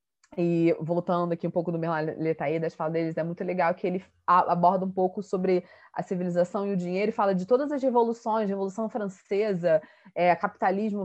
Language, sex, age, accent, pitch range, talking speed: Portuguese, female, 20-39, Brazilian, 170-200 Hz, 185 wpm